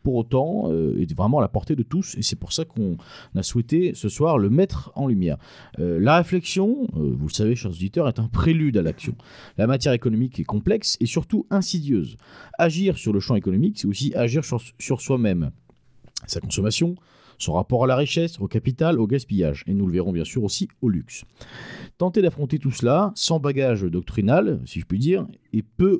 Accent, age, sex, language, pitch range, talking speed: French, 40-59, male, French, 100-140 Hz, 205 wpm